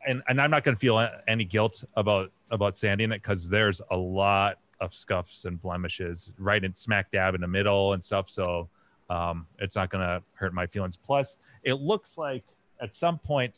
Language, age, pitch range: English, 30-49, 95-115 Hz